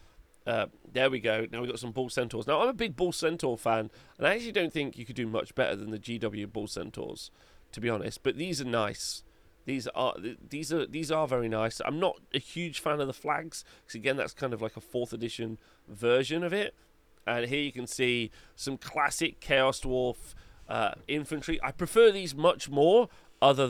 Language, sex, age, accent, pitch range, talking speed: English, male, 30-49, British, 110-140 Hz, 215 wpm